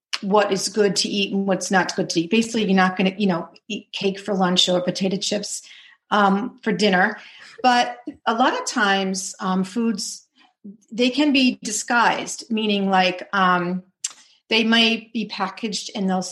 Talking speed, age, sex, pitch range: 175 wpm, 40-59, female, 190-225 Hz